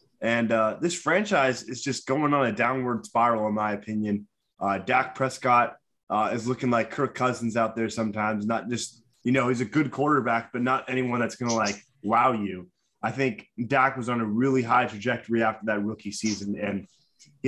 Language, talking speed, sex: English, 200 wpm, male